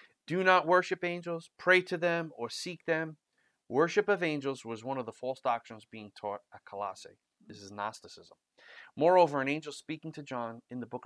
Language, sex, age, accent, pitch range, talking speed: English, male, 30-49, American, 115-145 Hz, 190 wpm